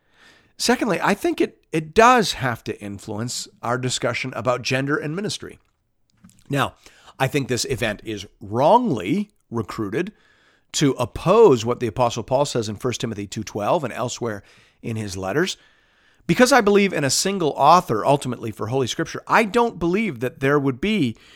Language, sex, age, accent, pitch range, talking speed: English, male, 50-69, American, 115-170 Hz, 160 wpm